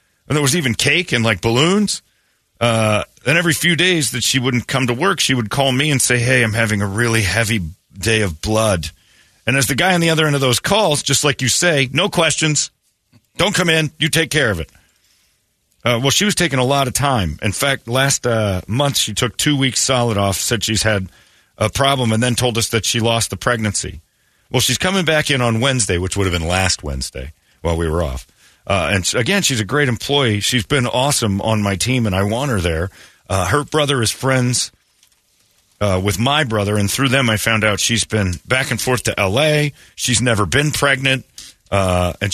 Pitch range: 100-140 Hz